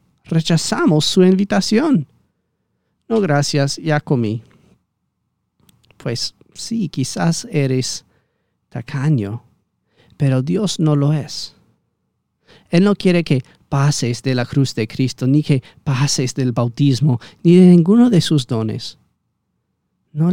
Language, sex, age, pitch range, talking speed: Spanish, male, 40-59, 125-160 Hz, 115 wpm